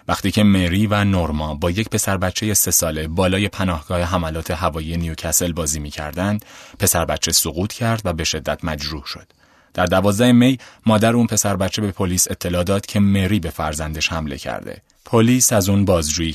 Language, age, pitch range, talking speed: Persian, 30-49, 85-110 Hz, 175 wpm